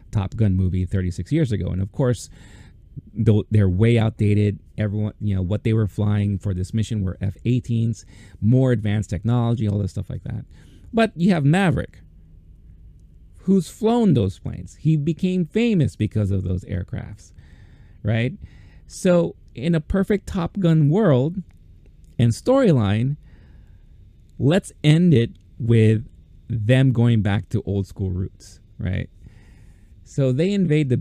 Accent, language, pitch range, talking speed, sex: American, English, 100-140 Hz, 140 wpm, male